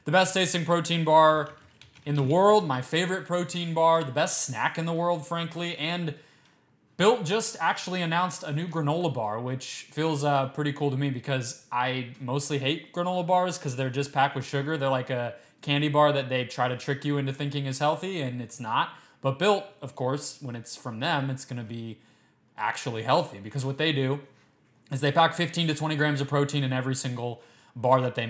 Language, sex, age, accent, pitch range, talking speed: English, male, 20-39, American, 130-160 Hz, 210 wpm